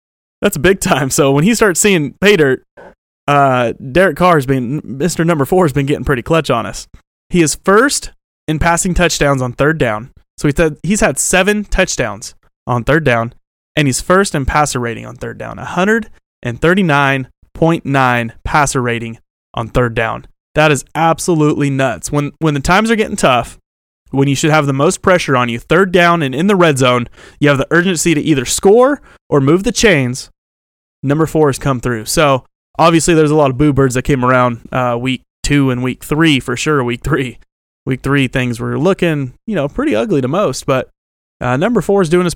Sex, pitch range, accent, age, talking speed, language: male, 130-170 Hz, American, 30-49, 205 wpm, English